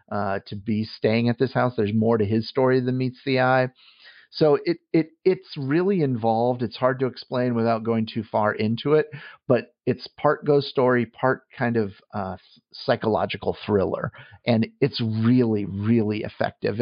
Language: English